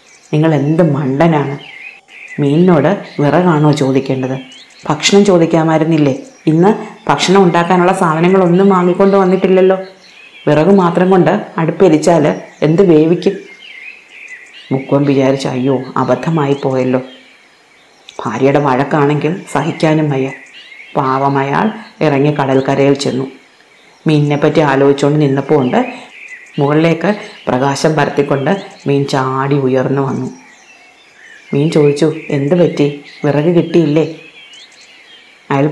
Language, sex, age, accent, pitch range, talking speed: Malayalam, female, 30-49, native, 140-175 Hz, 85 wpm